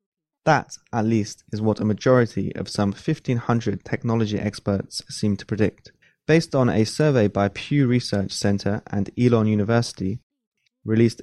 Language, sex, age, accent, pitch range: Chinese, male, 20-39, British, 105-135 Hz